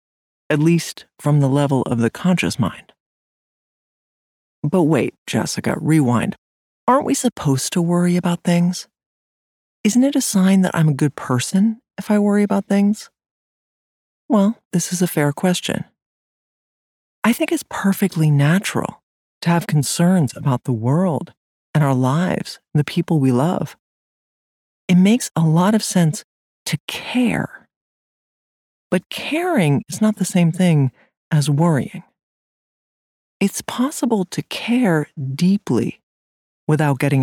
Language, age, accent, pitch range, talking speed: English, 40-59, American, 125-195 Hz, 135 wpm